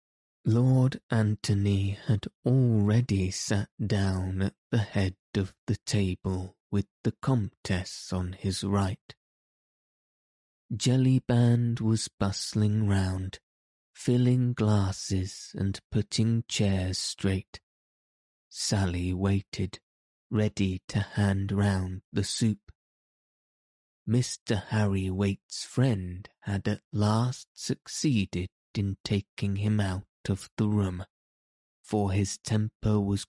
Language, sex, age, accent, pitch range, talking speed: English, male, 20-39, British, 95-110 Hz, 100 wpm